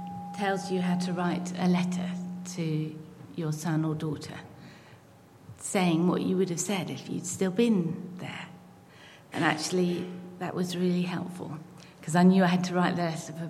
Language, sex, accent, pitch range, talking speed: English, female, British, 160-190 Hz, 175 wpm